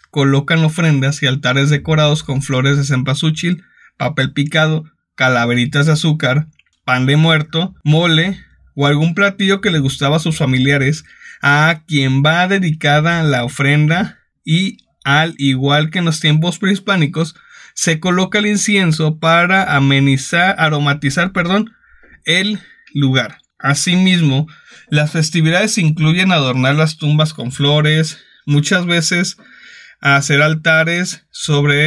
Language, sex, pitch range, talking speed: Spanish, male, 140-175 Hz, 125 wpm